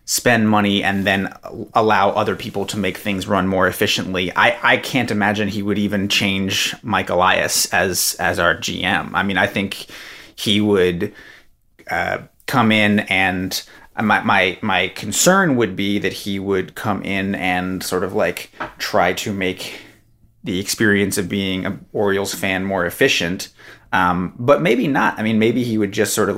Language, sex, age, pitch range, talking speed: English, male, 30-49, 95-110 Hz, 175 wpm